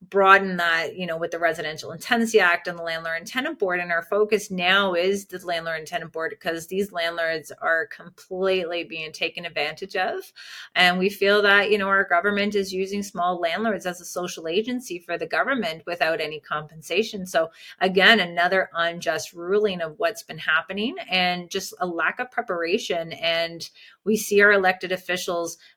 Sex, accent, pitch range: female, American, 165-195 Hz